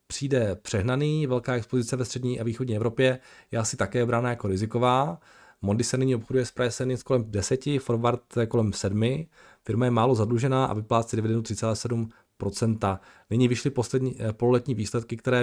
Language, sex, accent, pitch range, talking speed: Czech, male, native, 110-130 Hz, 155 wpm